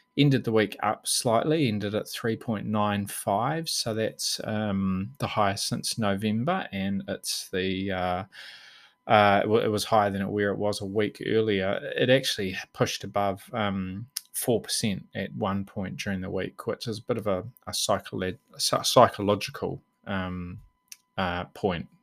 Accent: Australian